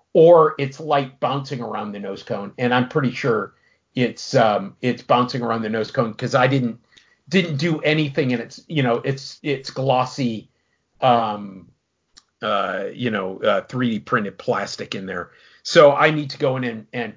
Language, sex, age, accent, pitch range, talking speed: English, male, 50-69, American, 115-150 Hz, 180 wpm